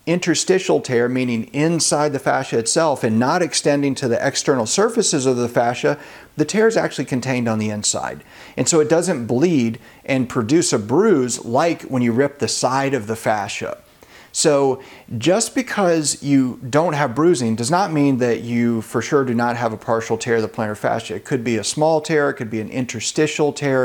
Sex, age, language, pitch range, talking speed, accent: male, 40-59, English, 120-165 Hz, 200 wpm, American